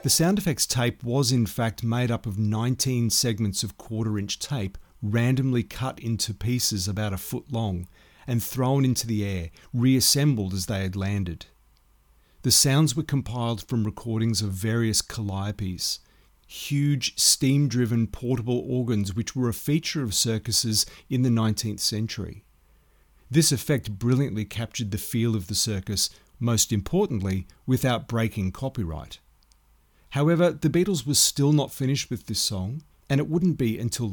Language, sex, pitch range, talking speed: English, male, 105-135 Hz, 150 wpm